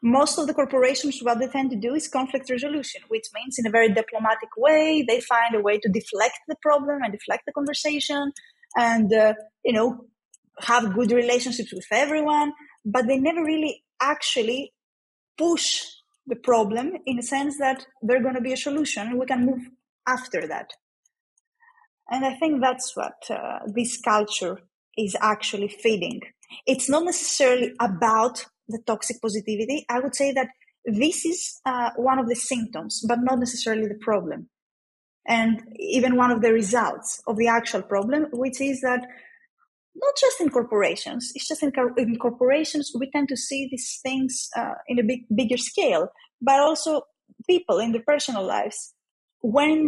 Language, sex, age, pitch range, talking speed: English, female, 20-39, 230-290 Hz, 165 wpm